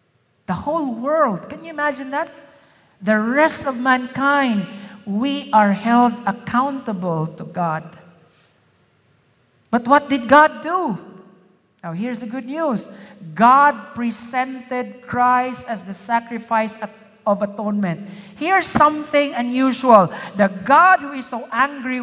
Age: 50-69